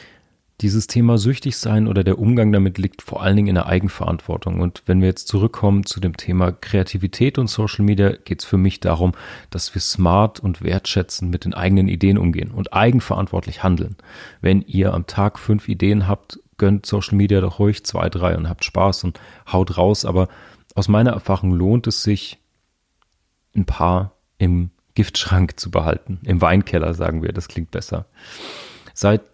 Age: 40-59